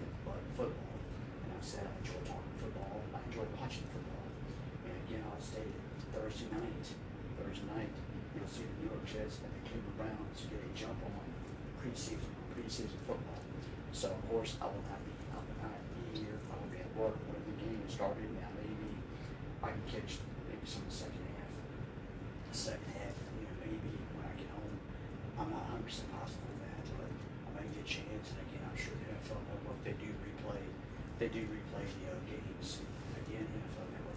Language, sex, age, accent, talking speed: English, male, 40-59, American, 190 wpm